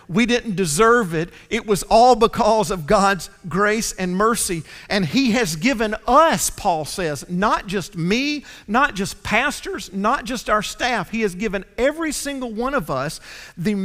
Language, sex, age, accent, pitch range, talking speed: English, male, 50-69, American, 190-255 Hz, 170 wpm